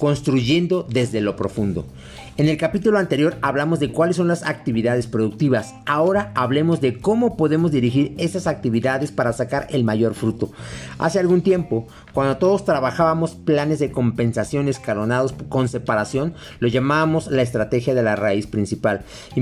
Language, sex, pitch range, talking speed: Spanish, male, 115-155 Hz, 150 wpm